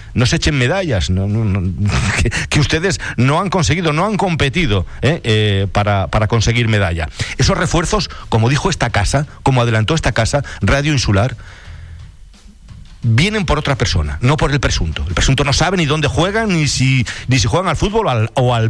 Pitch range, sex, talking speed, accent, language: 100-150 Hz, male, 190 wpm, Spanish, Spanish